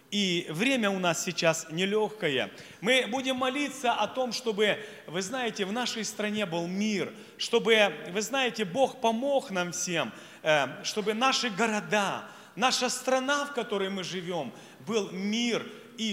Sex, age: male, 30-49